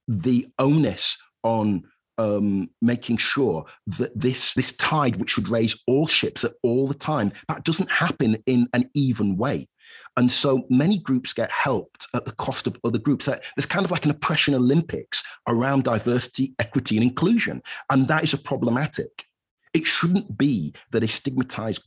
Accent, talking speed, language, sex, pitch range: British, 165 wpm, English, male, 105-130 Hz